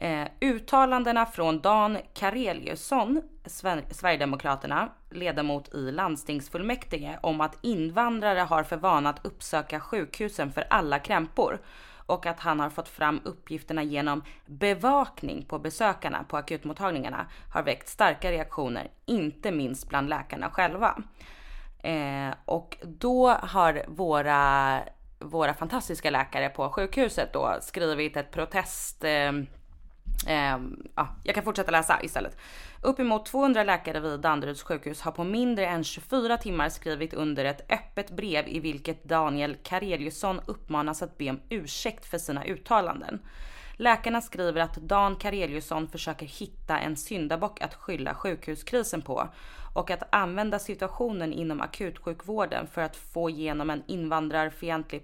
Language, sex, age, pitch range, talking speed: English, female, 20-39, 150-200 Hz, 130 wpm